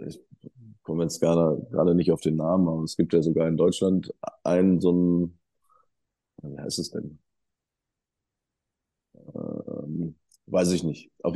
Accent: German